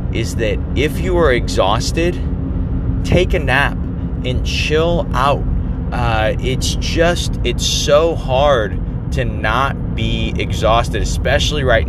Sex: male